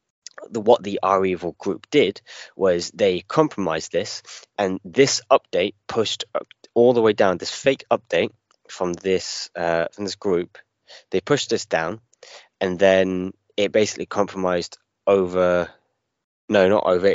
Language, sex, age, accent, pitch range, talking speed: English, male, 20-39, British, 85-100 Hz, 145 wpm